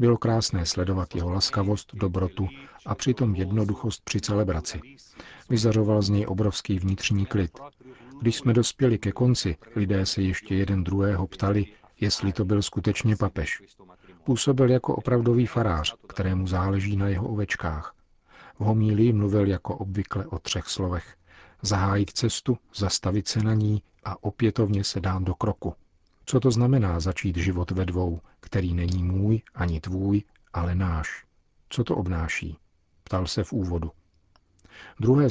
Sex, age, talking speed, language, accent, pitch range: male, 40-59, 145 wpm, Czech, native, 95-110 Hz